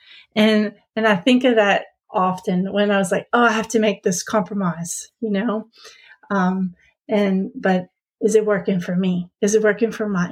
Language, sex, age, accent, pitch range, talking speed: English, female, 30-49, American, 185-220 Hz, 190 wpm